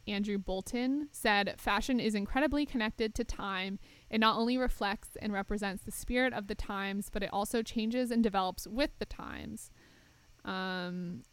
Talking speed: 160 wpm